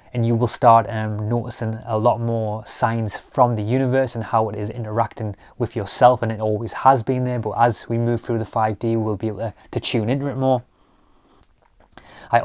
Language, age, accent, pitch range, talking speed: English, 20-39, British, 110-125 Hz, 205 wpm